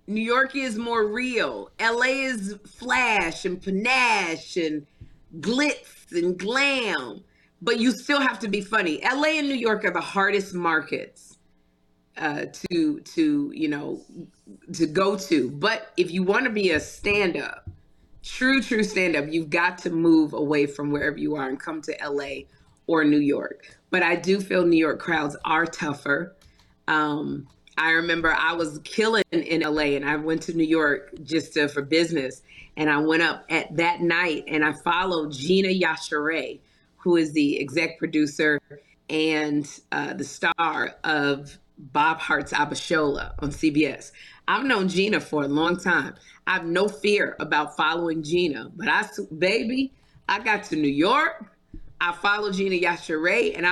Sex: female